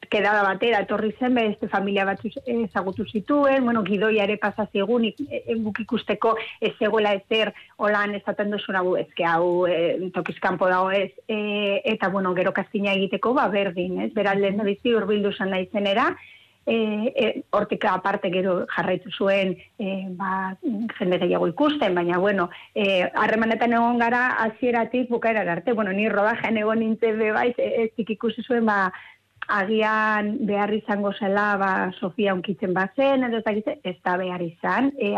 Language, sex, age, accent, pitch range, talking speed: Spanish, female, 30-49, Spanish, 195-220 Hz, 170 wpm